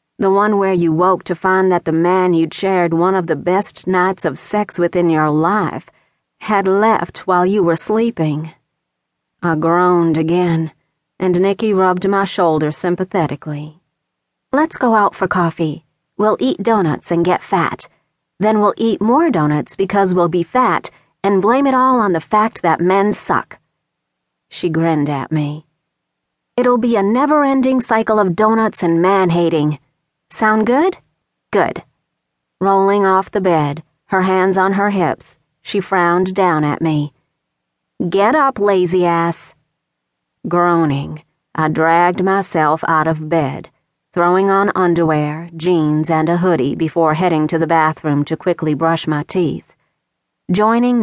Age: 40-59